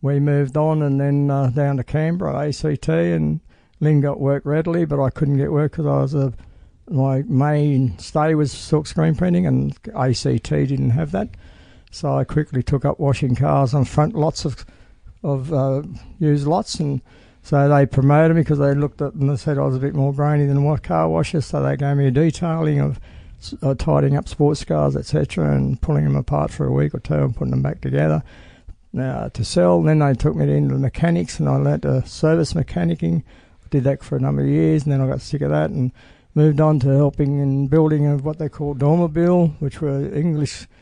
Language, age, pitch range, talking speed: English, 60-79, 120-150 Hz, 215 wpm